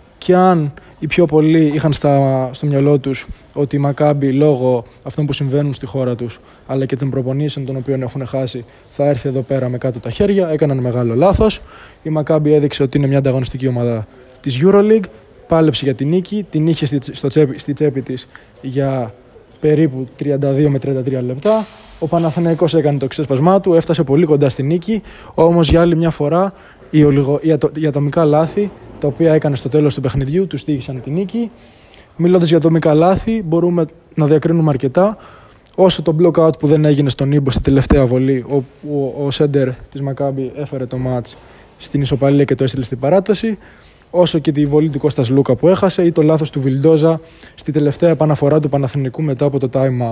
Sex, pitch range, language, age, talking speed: male, 135-165 Hz, Greek, 20-39, 185 wpm